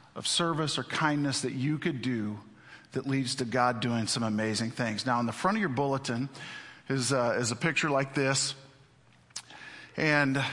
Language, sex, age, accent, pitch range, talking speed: English, male, 40-59, American, 130-170 Hz, 175 wpm